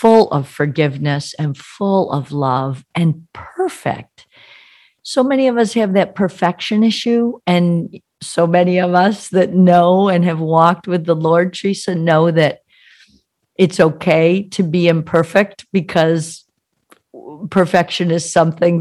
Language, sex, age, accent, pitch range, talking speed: English, female, 50-69, American, 155-190 Hz, 135 wpm